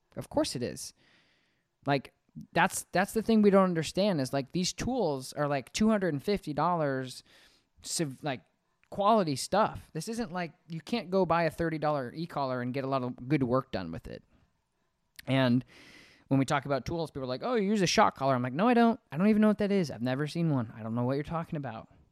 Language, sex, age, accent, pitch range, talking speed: English, male, 20-39, American, 130-180 Hz, 215 wpm